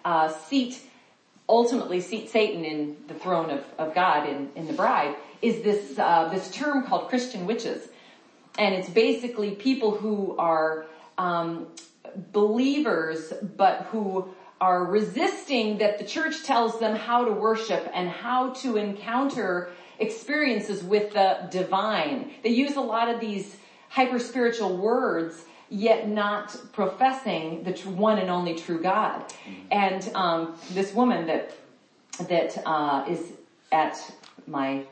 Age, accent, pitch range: 40-59, American, 165-230 Hz